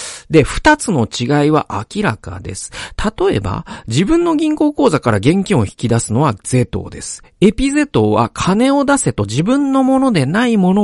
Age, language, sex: 40-59, Japanese, male